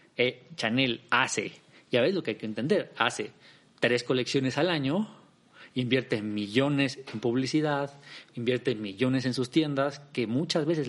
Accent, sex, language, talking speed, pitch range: Mexican, male, Spanish, 150 wpm, 135-175 Hz